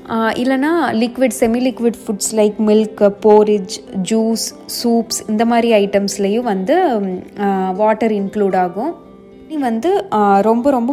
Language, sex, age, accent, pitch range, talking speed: Tamil, female, 20-39, native, 200-235 Hz, 110 wpm